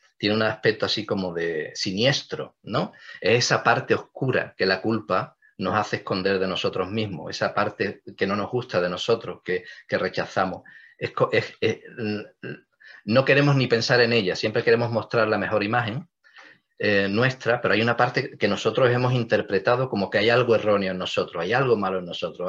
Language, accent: English, Spanish